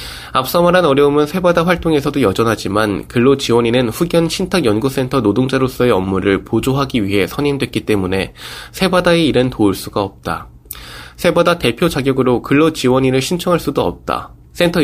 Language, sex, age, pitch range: Korean, male, 20-39, 100-145 Hz